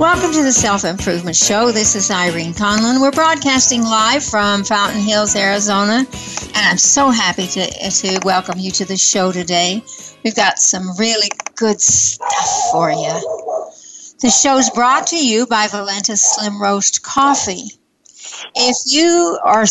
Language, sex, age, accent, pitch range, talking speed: English, female, 60-79, American, 200-260 Hz, 150 wpm